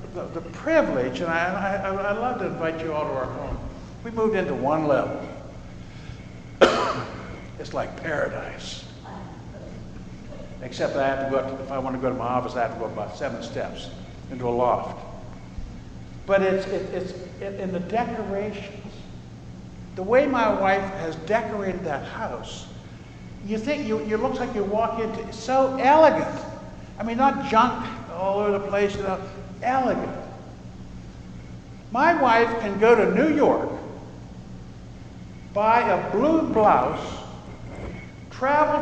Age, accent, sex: 60-79, American, male